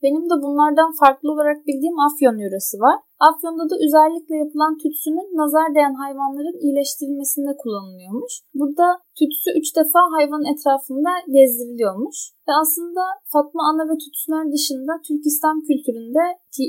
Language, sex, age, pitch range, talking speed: Turkish, female, 10-29, 260-310 Hz, 130 wpm